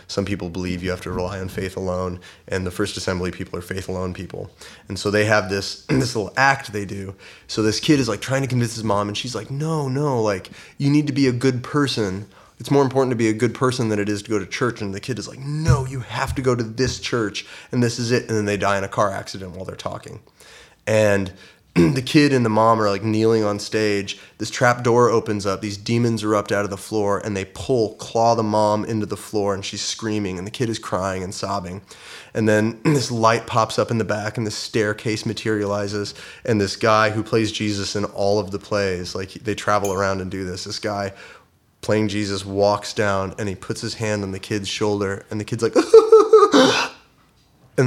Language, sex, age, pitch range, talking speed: English, male, 20-39, 100-115 Hz, 235 wpm